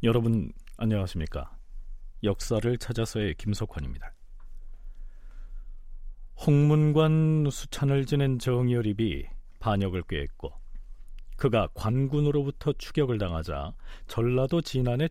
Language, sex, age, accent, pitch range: Korean, male, 40-59, native, 90-145 Hz